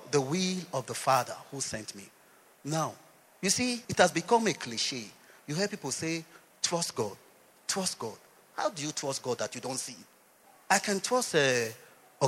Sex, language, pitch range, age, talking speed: male, English, 150-240 Hz, 30-49, 180 wpm